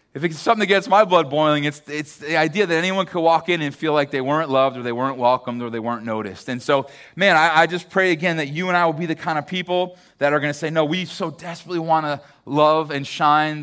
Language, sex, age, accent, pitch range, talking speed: English, male, 30-49, American, 145-175 Hz, 280 wpm